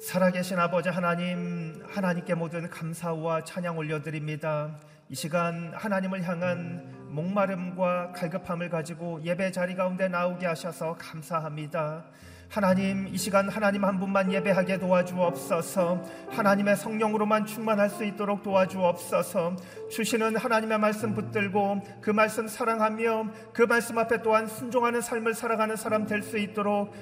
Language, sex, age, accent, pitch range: Korean, male, 40-59, native, 180-220 Hz